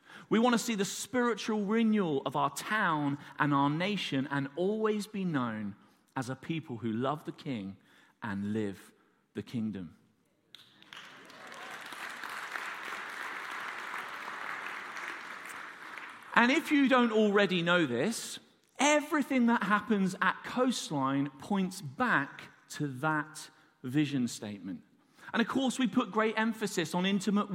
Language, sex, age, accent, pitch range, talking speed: English, male, 40-59, British, 155-220 Hz, 120 wpm